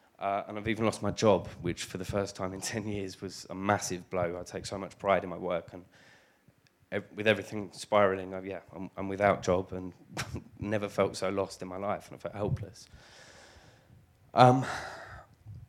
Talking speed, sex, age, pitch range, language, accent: 195 wpm, male, 20-39, 95-110 Hz, English, British